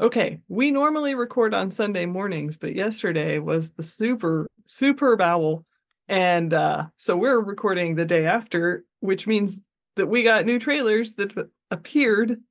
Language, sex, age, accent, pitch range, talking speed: English, female, 20-39, American, 170-230 Hz, 150 wpm